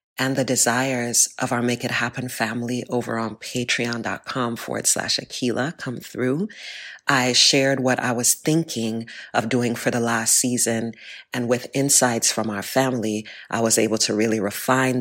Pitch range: 115-125 Hz